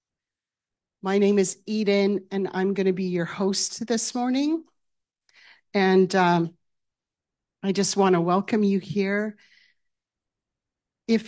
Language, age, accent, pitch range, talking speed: English, 40-59, American, 185-220 Hz, 120 wpm